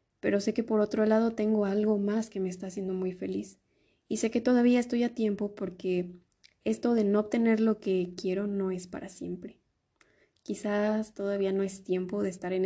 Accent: Mexican